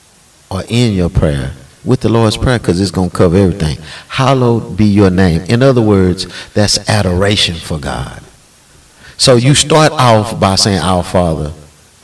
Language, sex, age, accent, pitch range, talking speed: English, male, 50-69, American, 90-125 Hz, 160 wpm